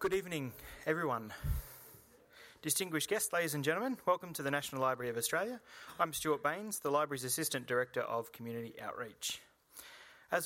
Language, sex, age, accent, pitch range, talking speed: English, male, 30-49, Australian, 120-155 Hz, 150 wpm